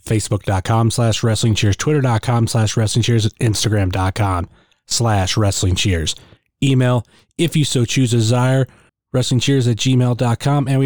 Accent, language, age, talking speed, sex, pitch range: American, English, 30-49, 115 wpm, male, 110-135 Hz